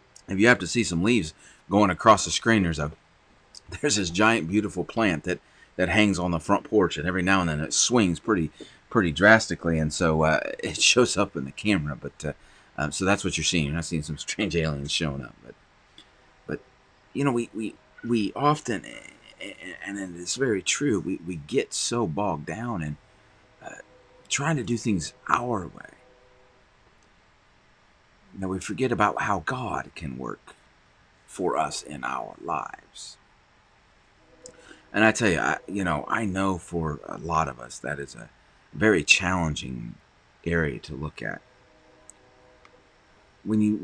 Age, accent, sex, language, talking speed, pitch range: 30-49, American, male, English, 170 wpm, 75-105 Hz